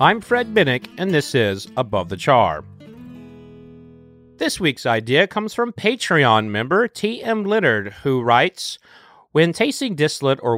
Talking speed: 135 wpm